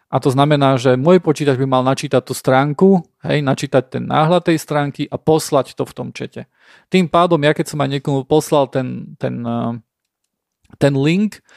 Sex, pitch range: male, 130-160 Hz